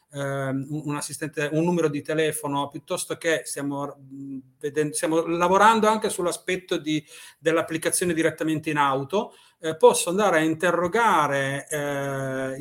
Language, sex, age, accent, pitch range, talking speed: Italian, male, 40-59, native, 145-190 Hz, 110 wpm